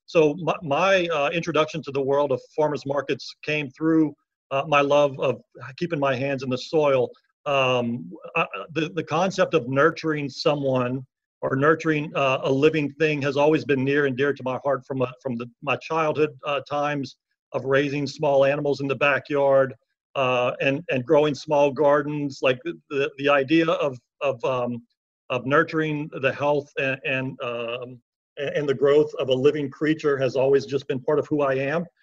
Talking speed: 180 wpm